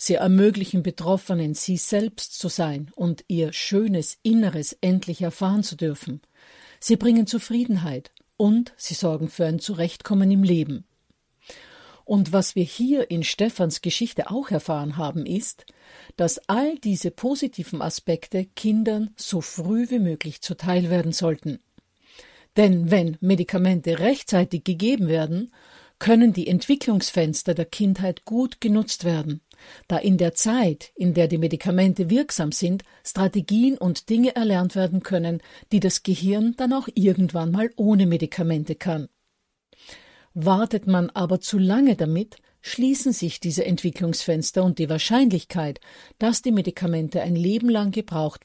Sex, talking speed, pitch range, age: female, 135 wpm, 170-215 Hz, 50-69